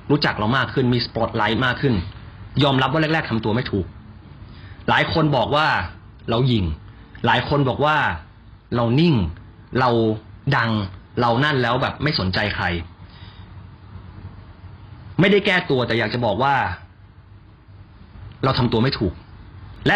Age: 20-39